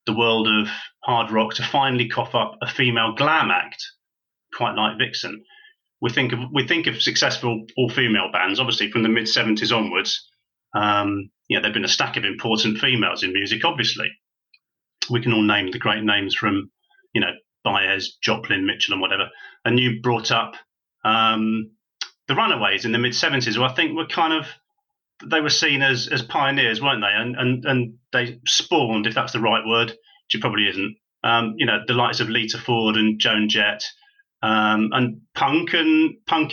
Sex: male